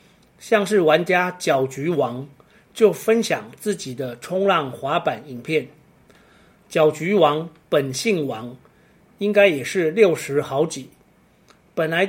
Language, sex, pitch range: Chinese, male, 145-200 Hz